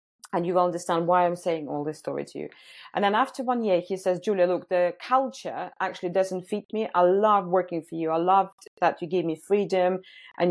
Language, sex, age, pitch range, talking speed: English, female, 30-49, 165-200 Hz, 230 wpm